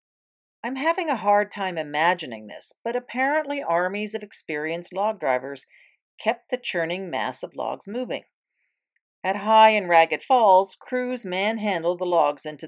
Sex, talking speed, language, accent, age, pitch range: female, 145 wpm, English, American, 40-59, 155-215 Hz